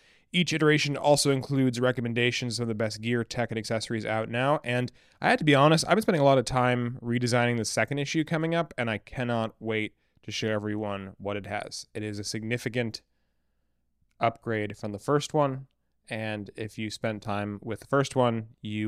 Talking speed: 195 wpm